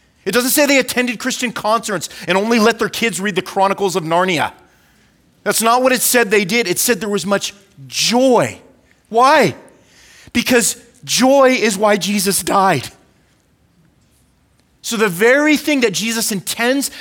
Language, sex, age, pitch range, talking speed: English, male, 30-49, 150-225 Hz, 155 wpm